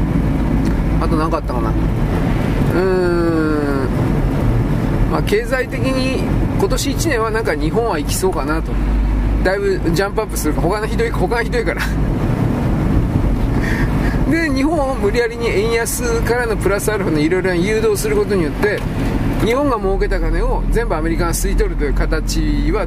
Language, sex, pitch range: Japanese, male, 145-200 Hz